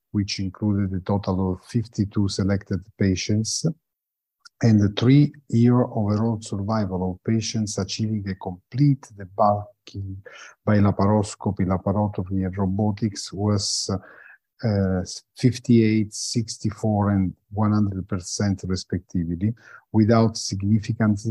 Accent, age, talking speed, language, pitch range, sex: Italian, 50-69, 95 wpm, English, 95-115 Hz, male